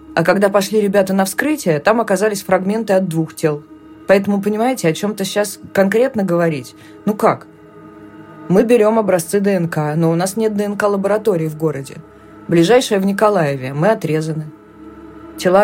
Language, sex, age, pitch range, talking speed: Russian, female, 20-39, 160-210 Hz, 145 wpm